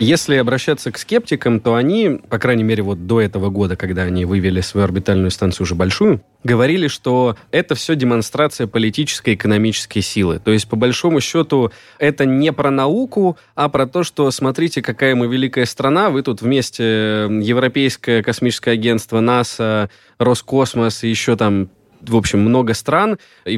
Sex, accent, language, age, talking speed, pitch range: male, native, Russian, 20-39, 165 wpm, 115-140 Hz